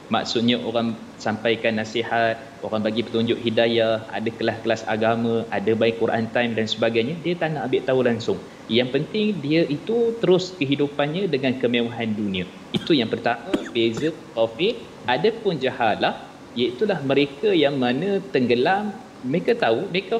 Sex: male